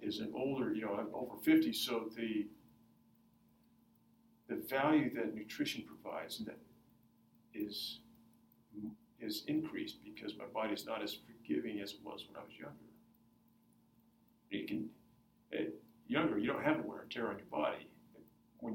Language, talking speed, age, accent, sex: English, 155 wpm, 50-69, American, male